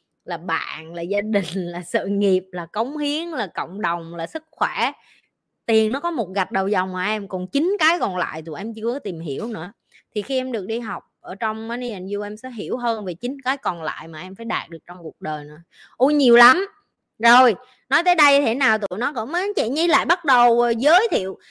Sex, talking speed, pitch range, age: female, 235 wpm, 200-255 Hz, 20-39